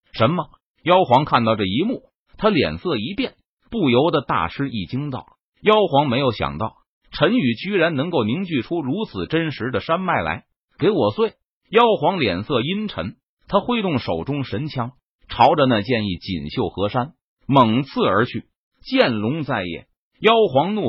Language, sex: Chinese, male